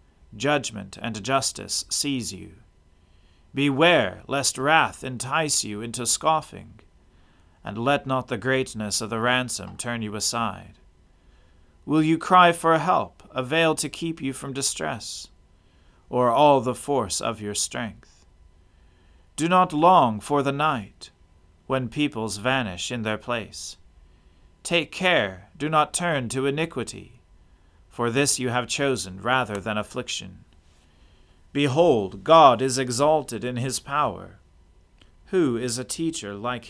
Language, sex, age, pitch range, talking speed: English, male, 40-59, 90-140 Hz, 130 wpm